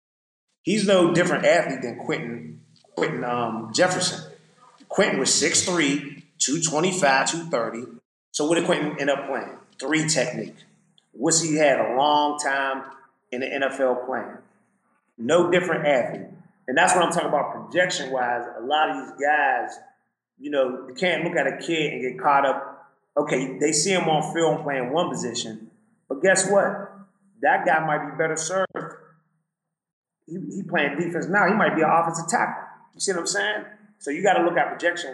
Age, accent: 30-49, American